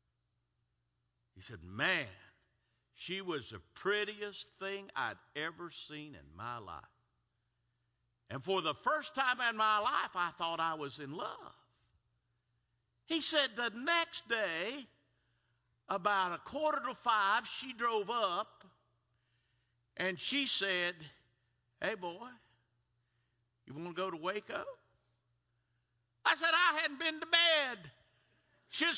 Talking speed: 125 wpm